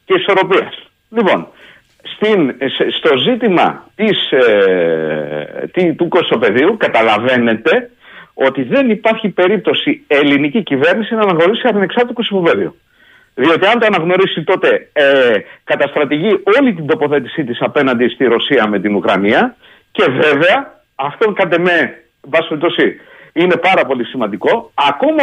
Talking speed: 115 wpm